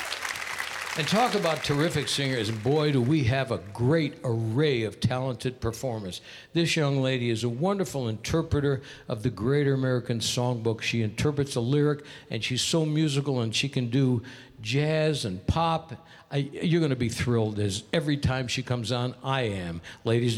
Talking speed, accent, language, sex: 160 wpm, American, English, male